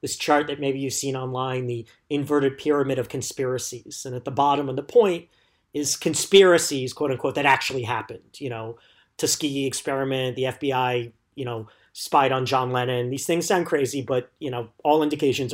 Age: 40-59